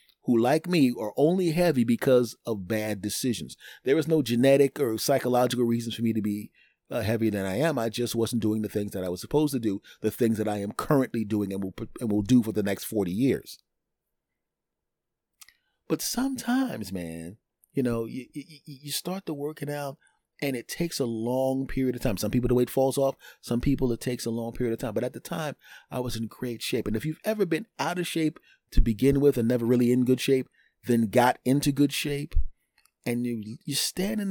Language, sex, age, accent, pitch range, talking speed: English, male, 30-49, American, 115-150 Hz, 220 wpm